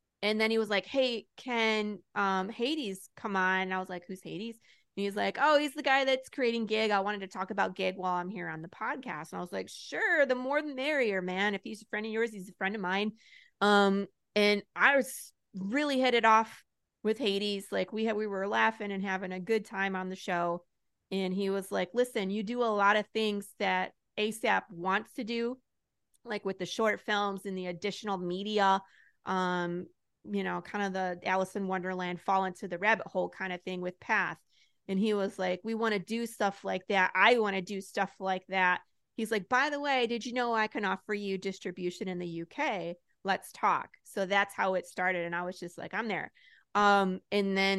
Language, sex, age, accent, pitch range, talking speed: English, female, 30-49, American, 190-220 Hz, 225 wpm